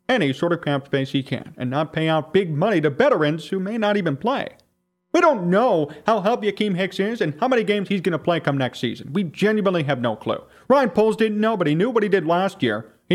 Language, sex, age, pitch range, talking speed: English, male, 40-59, 135-205 Hz, 260 wpm